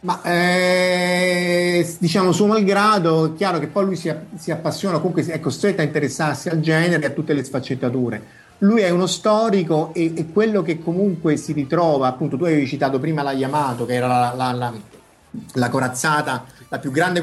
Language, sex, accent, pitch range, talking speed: Italian, male, native, 130-160 Hz, 190 wpm